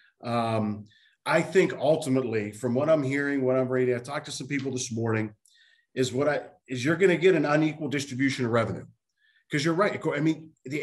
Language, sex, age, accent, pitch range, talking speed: English, male, 40-59, American, 125-155 Hz, 205 wpm